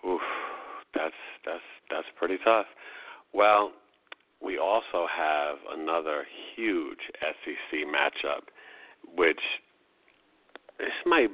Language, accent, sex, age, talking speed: English, American, male, 50-69, 90 wpm